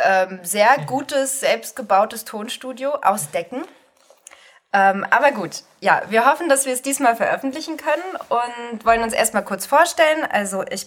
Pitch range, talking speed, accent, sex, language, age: 185-255 Hz, 140 wpm, German, female, German, 20-39